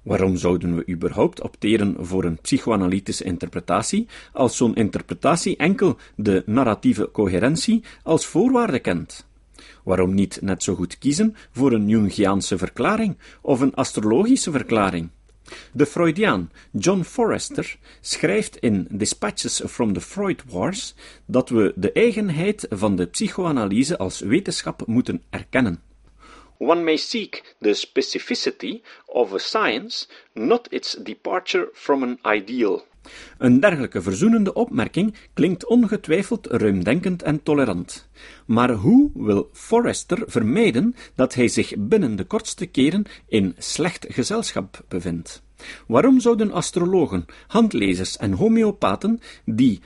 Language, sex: Dutch, male